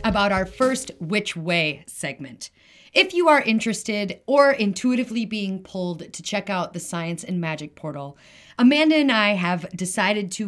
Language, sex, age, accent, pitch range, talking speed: English, female, 30-49, American, 170-230 Hz, 160 wpm